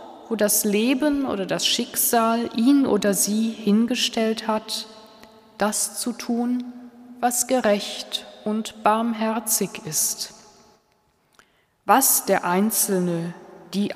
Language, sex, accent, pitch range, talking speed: German, female, German, 195-245 Hz, 100 wpm